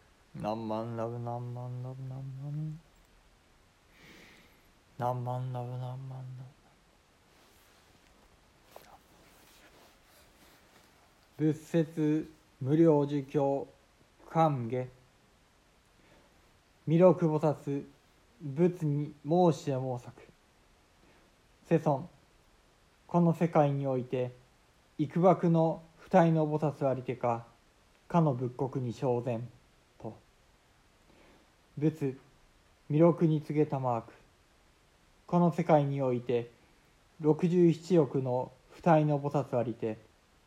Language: Japanese